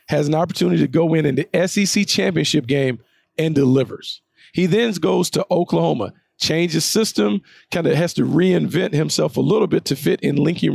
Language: English